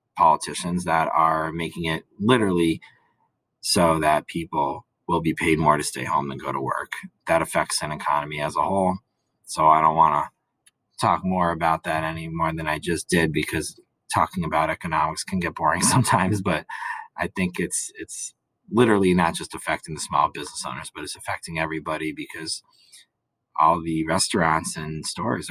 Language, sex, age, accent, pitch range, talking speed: English, male, 30-49, American, 80-90 Hz, 170 wpm